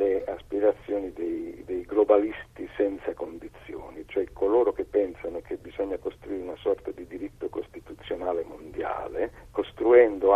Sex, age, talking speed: male, 60-79, 120 wpm